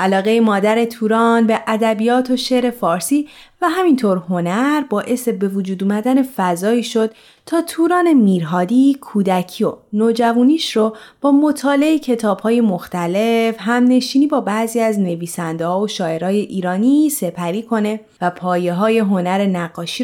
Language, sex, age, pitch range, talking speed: Persian, female, 30-49, 185-260 Hz, 130 wpm